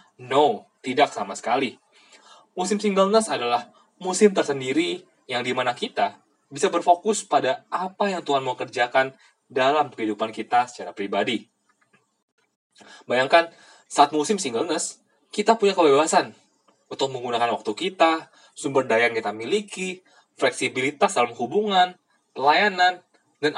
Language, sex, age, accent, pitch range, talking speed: Indonesian, male, 20-39, native, 130-210 Hz, 115 wpm